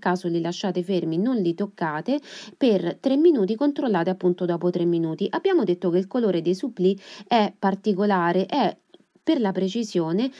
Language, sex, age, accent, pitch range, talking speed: Italian, female, 30-49, native, 175-235 Hz, 155 wpm